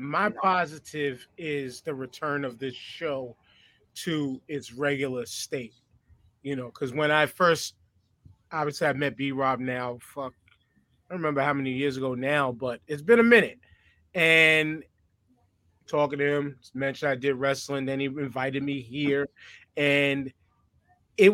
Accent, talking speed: American, 145 wpm